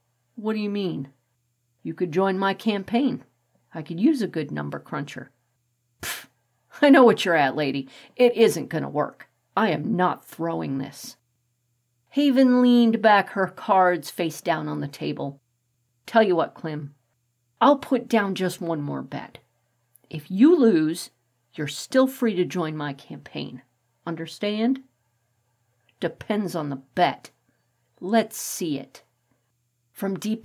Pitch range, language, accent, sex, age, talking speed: 130-215 Hz, English, American, female, 50-69, 145 wpm